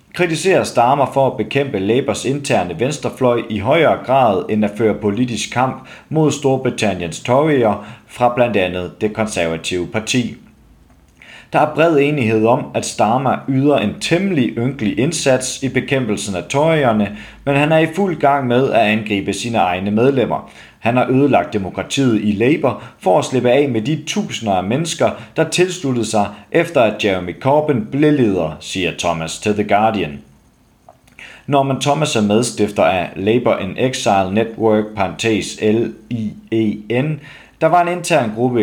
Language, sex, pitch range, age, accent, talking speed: Danish, male, 105-140 Hz, 40-59, native, 155 wpm